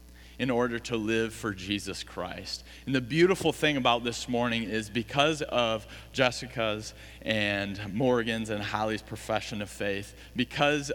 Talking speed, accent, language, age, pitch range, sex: 140 wpm, American, English, 40-59, 100-130 Hz, male